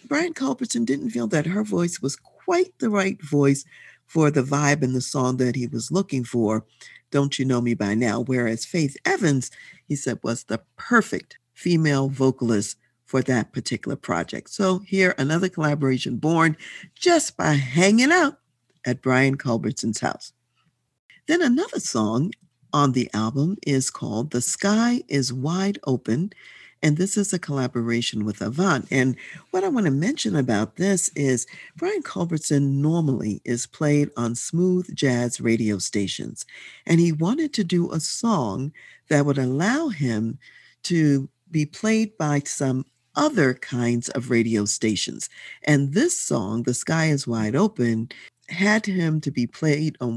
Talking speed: 155 wpm